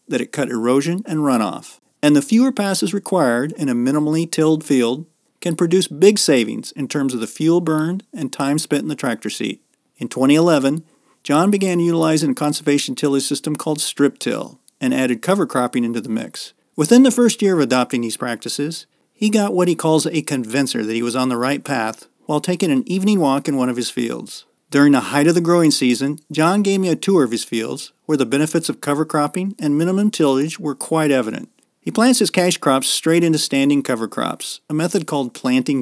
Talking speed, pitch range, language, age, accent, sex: 210 wpm, 135-170 Hz, English, 40-59, American, male